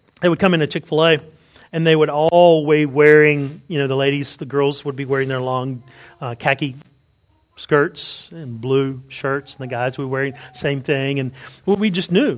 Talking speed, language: 205 wpm, English